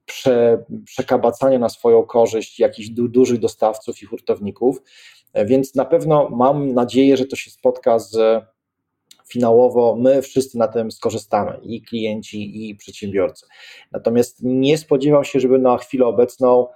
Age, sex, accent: 20-39, male, native